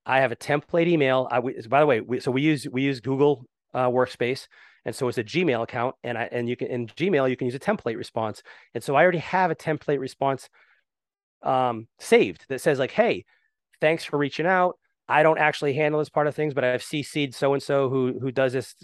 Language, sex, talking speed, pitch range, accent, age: English, male, 230 wpm, 125-150 Hz, American, 30-49